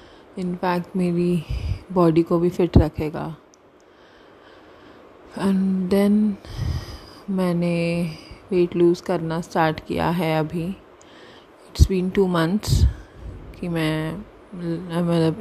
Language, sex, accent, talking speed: Hindi, female, native, 95 wpm